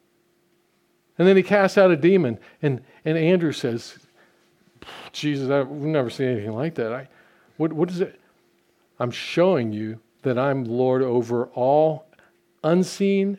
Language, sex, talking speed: English, male, 145 wpm